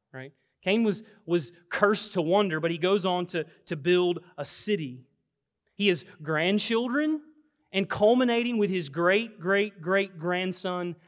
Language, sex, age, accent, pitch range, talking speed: English, male, 30-49, American, 160-235 Hz, 145 wpm